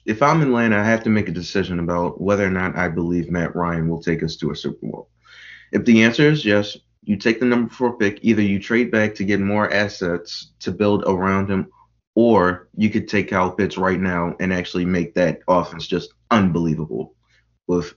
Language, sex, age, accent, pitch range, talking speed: English, male, 20-39, American, 90-110 Hz, 215 wpm